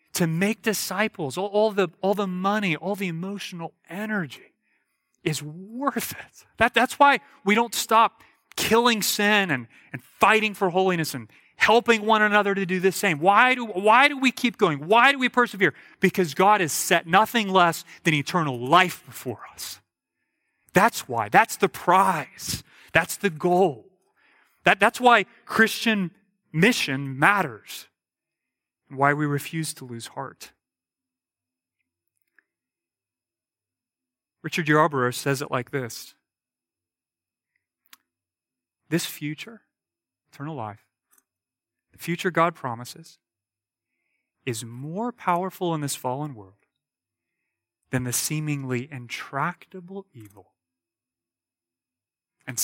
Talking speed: 120 wpm